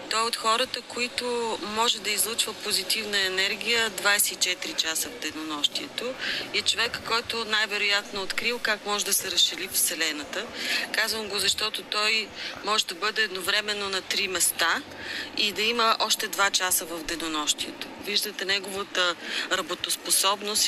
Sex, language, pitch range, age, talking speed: female, Bulgarian, 180-215 Hz, 30-49, 140 wpm